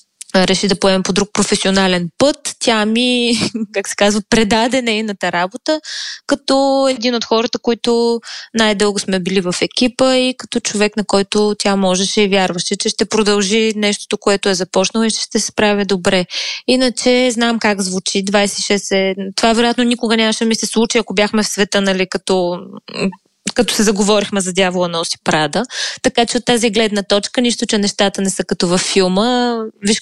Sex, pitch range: female, 200-245 Hz